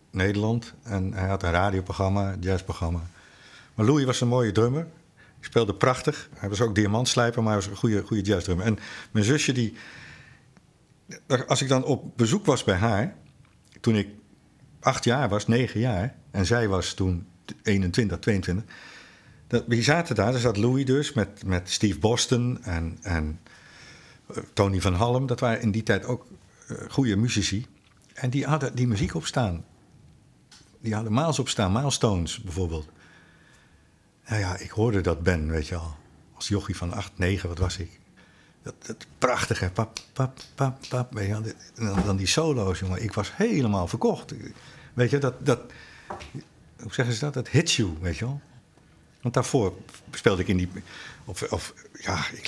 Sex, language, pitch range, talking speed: male, Dutch, 95-125 Hz, 175 wpm